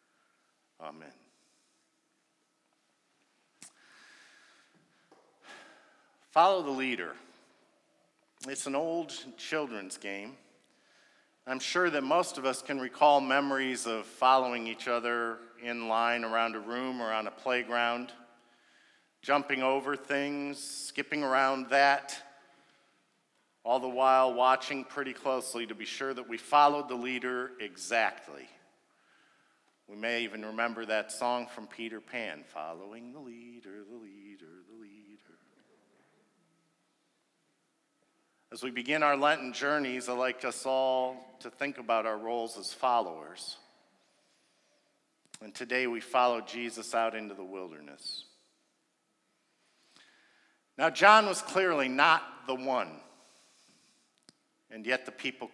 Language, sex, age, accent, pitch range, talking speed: English, male, 50-69, American, 115-140 Hz, 115 wpm